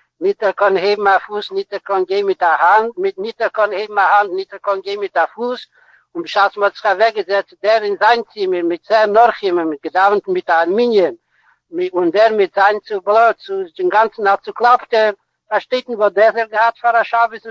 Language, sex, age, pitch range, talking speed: Hebrew, male, 60-79, 195-225 Hz, 215 wpm